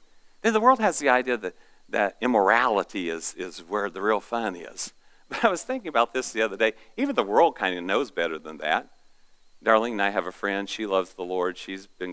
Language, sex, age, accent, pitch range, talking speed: English, male, 50-69, American, 95-120 Hz, 235 wpm